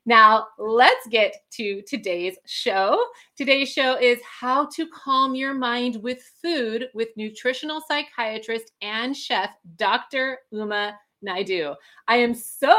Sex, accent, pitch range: female, American, 215-270 Hz